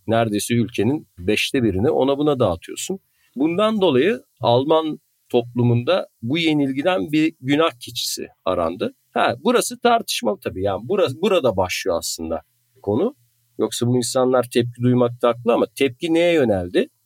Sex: male